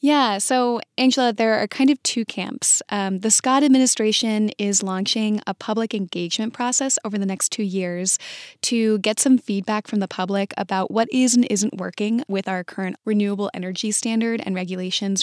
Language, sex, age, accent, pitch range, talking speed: English, female, 10-29, American, 190-235 Hz, 175 wpm